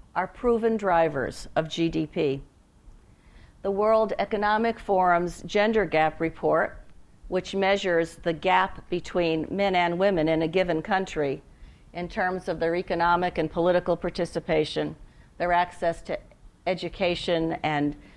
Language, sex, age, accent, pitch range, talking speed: English, female, 50-69, American, 160-190 Hz, 120 wpm